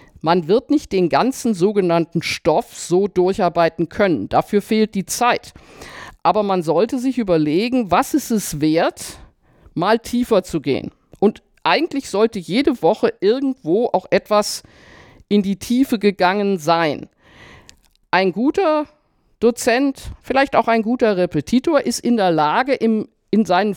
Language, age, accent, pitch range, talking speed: German, 50-69, German, 175-235 Hz, 135 wpm